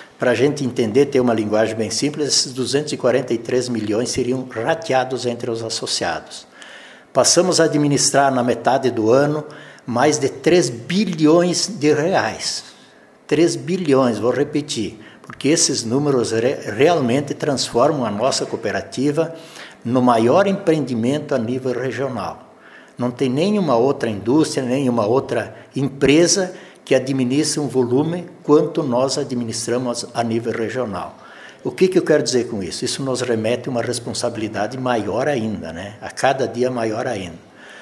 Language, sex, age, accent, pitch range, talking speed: Portuguese, male, 60-79, Brazilian, 120-145 Hz, 140 wpm